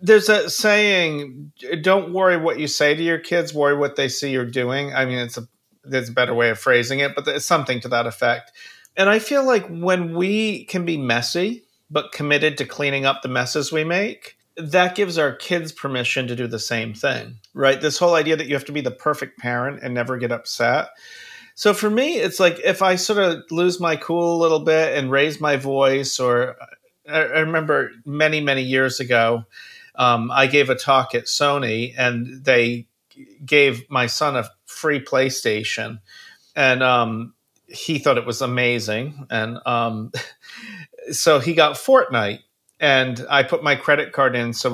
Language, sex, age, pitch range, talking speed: English, male, 40-59, 120-165 Hz, 190 wpm